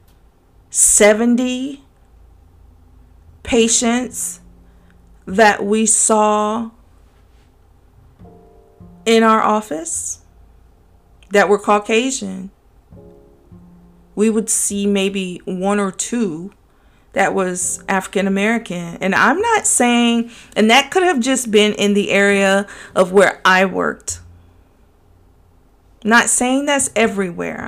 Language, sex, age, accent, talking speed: English, female, 40-59, American, 90 wpm